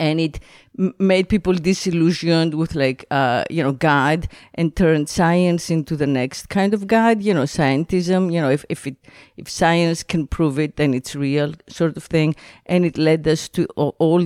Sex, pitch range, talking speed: female, 145-180 Hz, 195 wpm